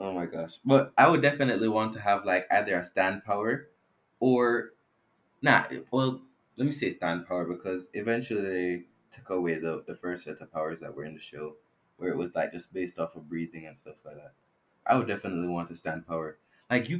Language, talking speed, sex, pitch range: English, 215 wpm, male, 85-115 Hz